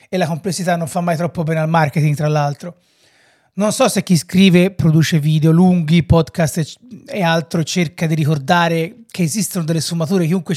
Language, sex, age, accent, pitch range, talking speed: Italian, male, 30-49, native, 160-185 Hz, 175 wpm